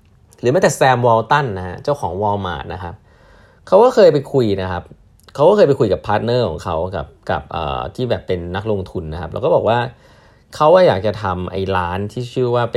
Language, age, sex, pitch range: Thai, 20-39, male, 95-125 Hz